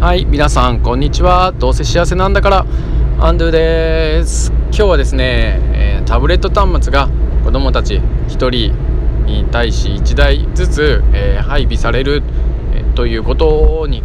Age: 20-39